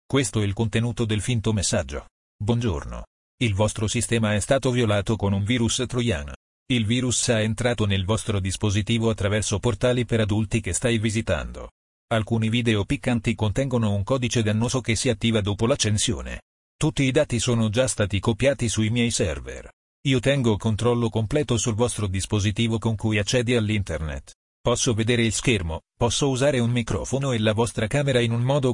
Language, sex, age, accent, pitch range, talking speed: Italian, male, 40-59, native, 105-120 Hz, 165 wpm